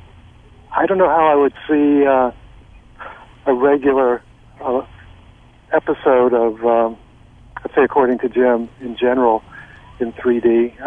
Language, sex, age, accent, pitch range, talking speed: English, male, 60-79, American, 115-130 Hz, 140 wpm